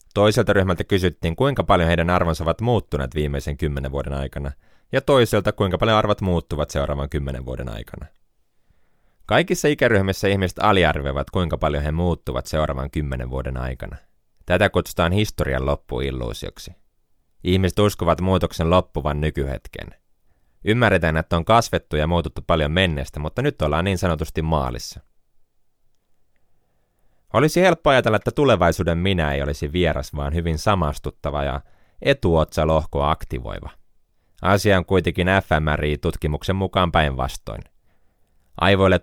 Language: Finnish